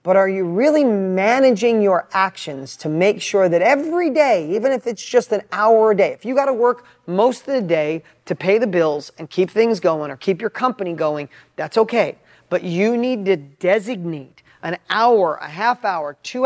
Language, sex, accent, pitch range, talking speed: English, male, American, 170-230 Hz, 200 wpm